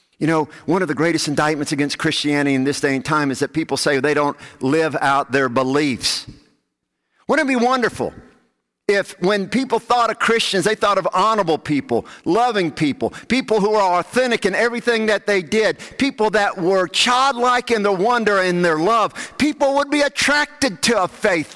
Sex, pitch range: male, 125-205 Hz